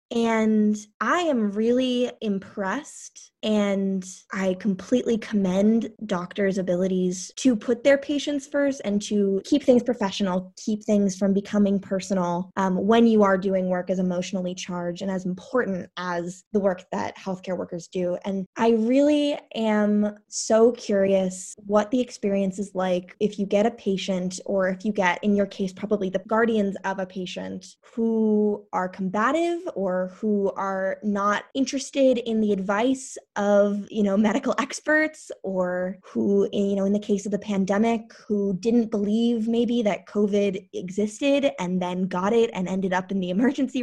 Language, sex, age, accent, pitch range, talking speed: English, female, 10-29, American, 190-230 Hz, 160 wpm